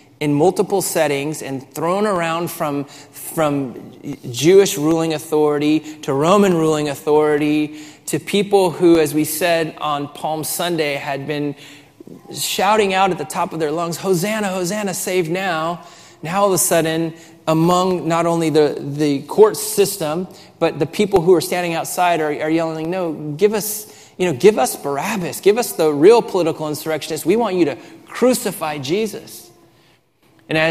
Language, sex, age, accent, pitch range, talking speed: English, male, 30-49, American, 145-170 Hz, 160 wpm